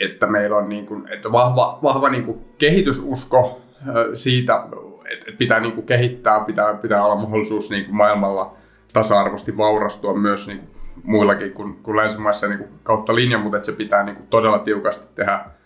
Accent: native